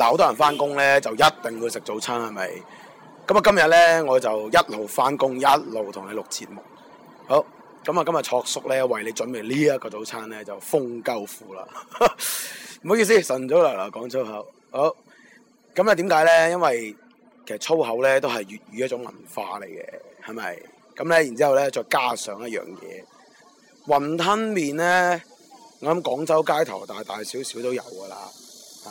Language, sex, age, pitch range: Chinese, male, 20-39, 115-155 Hz